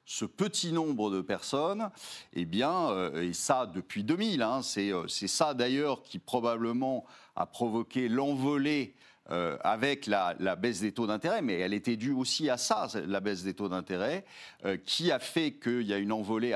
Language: French